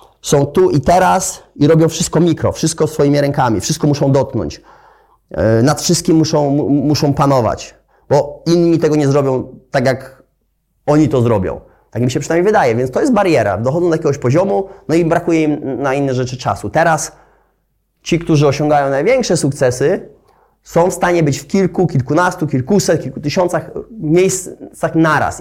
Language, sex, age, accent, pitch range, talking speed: Polish, male, 30-49, native, 140-165 Hz, 160 wpm